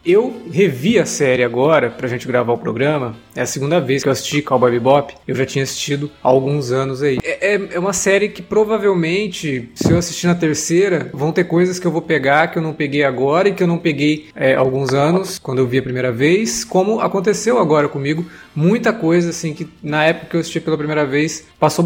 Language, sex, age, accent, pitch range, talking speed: Portuguese, male, 20-39, Brazilian, 145-200 Hz, 220 wpm